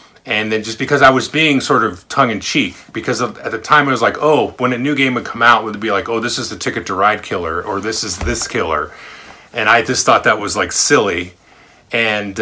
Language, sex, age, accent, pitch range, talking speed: English, male, 30-49, American, 95-120 Hz, 250 wpm